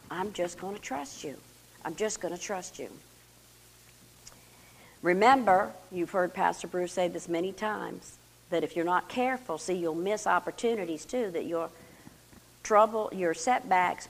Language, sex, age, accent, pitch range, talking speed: English, female, 50-69, American, 165-230 Hz, 155 wpm